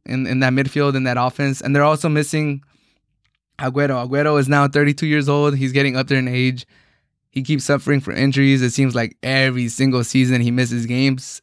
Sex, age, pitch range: male, 20-39, 125-140 Hz